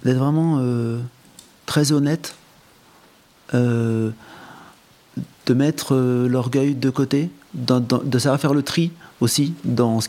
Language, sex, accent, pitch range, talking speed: French, male, French, 125-170 Hz, 130 wpm